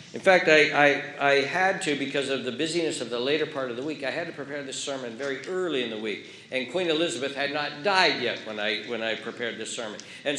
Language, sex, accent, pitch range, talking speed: English, male, American, 135-170 Hz, 255 wpm